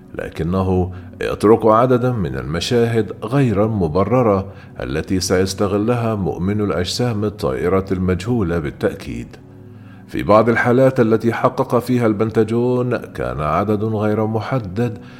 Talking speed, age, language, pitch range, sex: 100 wpm, 40-59, Arabic, 95-120 Hz, male